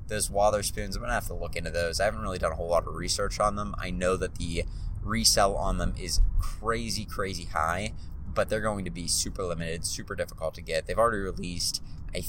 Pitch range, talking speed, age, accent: 80-100 Hz, 225 wpm, 20-39, American